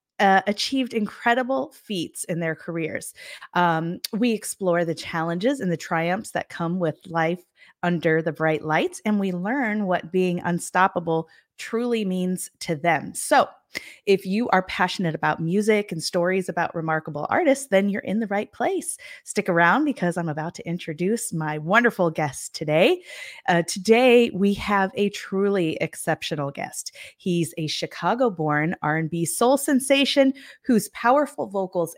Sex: female